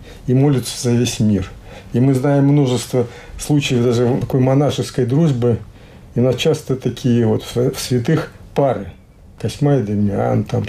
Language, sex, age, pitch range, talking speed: Russian, male, 50-69, 110-135 Hz, 140 wpm